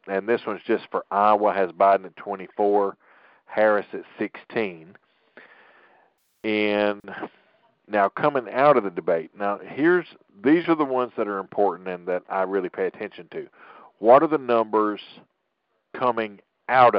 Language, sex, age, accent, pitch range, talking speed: English, male, 50-69, American, 95-115 Hz, 150 wpm